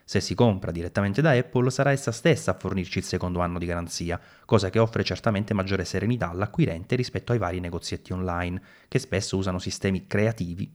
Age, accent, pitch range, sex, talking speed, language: 30-49, native, 95-135 Hz, male, 185 wpm, Italian